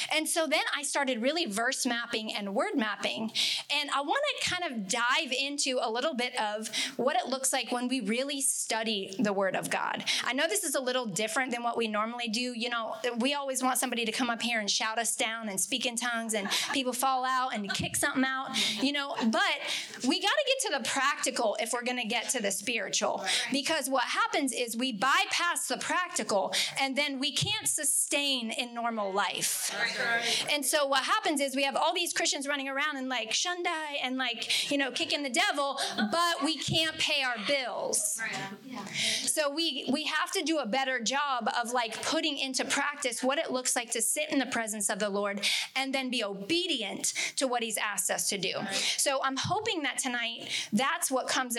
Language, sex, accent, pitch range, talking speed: English, female, American, 230-285 Hz, 210 wpm